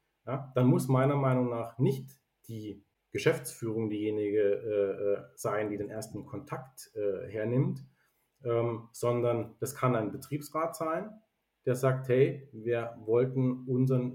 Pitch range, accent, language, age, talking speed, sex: 115-140 Hz, German, German, 40-59, 125 wpm, male